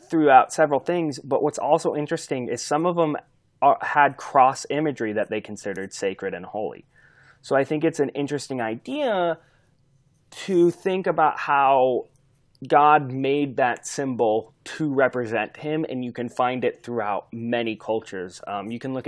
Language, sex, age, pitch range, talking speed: English, male, 20-39, 110-140 Hz, 155 wpm